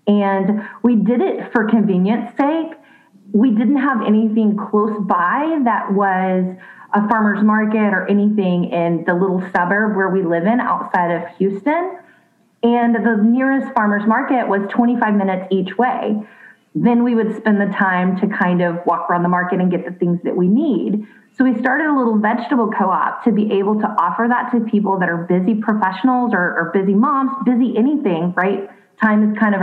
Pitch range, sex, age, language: 190-240 Hz, female, 30-49, English